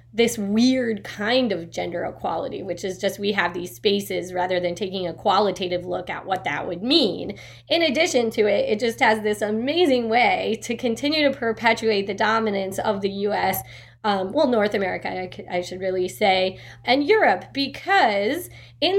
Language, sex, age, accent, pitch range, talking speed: English, female, 20-39, American, 185-260 Hz, 175 wpm